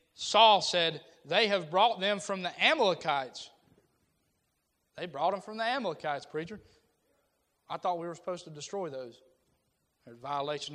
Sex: male